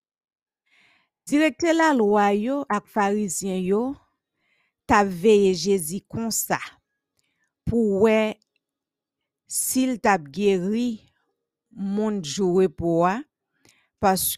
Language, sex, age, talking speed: English, female, 50-69, 85 wpm